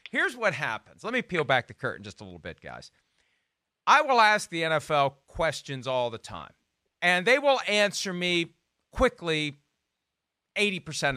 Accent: American